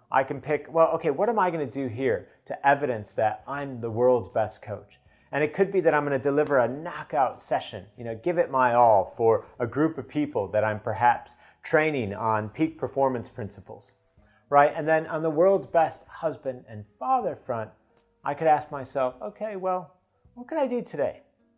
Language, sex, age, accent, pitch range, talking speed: English, male, 30-49, American, 105-145 Hz, 205 wpm